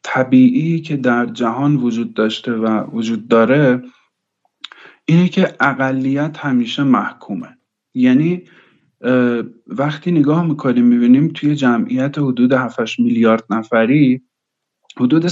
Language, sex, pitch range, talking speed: Persian, male, 120-155 Hz, 100 wpm